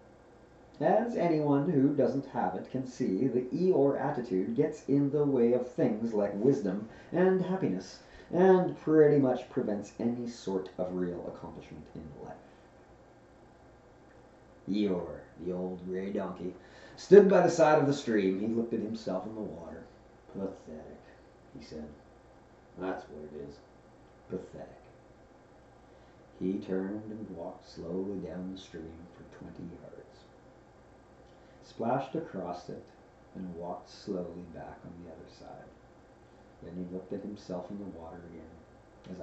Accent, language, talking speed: American, English, 140 wpm